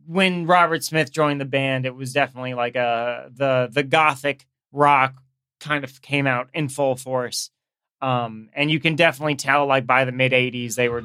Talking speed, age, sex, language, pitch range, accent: 190 wpm, 30-49, male, English, 125-145 Hz, American